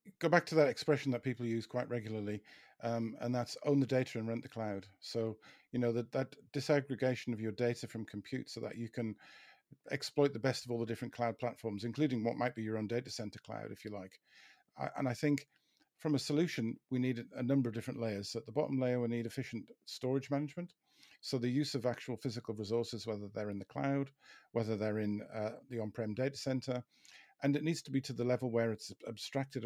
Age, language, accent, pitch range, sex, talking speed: 50-69, English, British, 110-135 Hz, male, 225 wpm